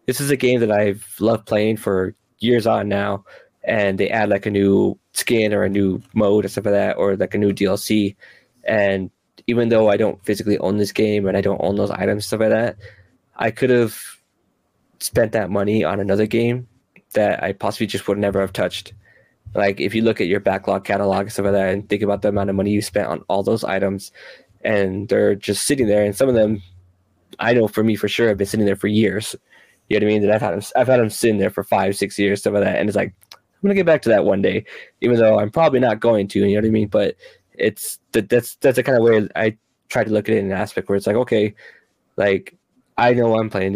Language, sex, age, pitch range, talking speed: English, male, 20-39, 100-110 Hz, 255 wpm